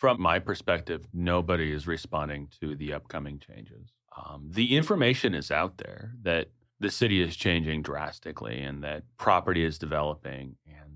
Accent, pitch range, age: American, 80-105 Hz, 30-49